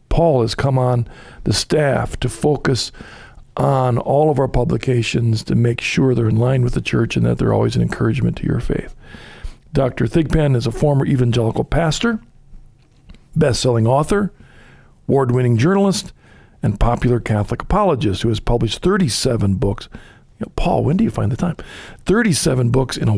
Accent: American